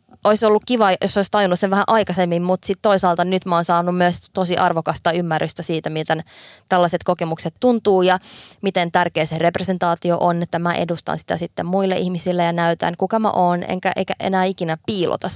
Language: Finnish